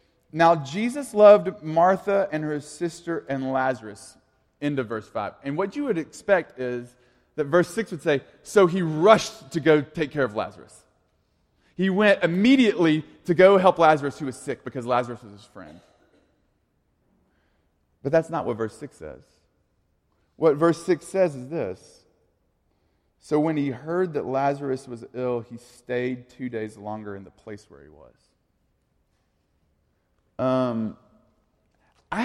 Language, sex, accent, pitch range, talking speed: English, male, American, 120-165 Hz, 150 wpm